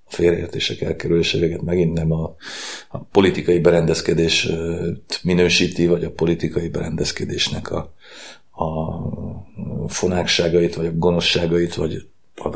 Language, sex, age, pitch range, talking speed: Hungarian, male, 40-59, 85-95 Hz, 100 wpm